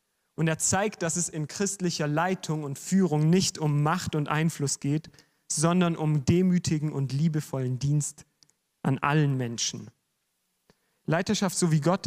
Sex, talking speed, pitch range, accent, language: male, 145 wpm, 140-165 Hz, German, German